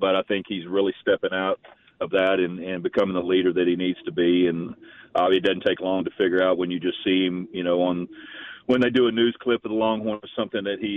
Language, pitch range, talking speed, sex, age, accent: English, 90-100 Hz, 270 wpm, male, 40-59, American